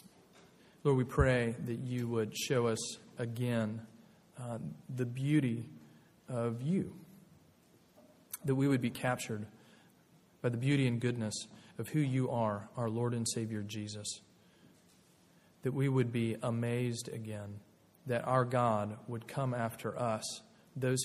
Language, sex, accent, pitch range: English, male, American, 110-130 Hz